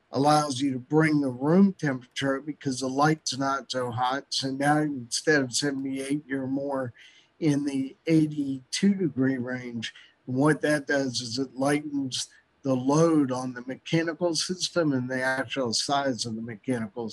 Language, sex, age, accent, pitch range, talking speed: English, male, 50-69, American, 130-150 Hz, 160 wpm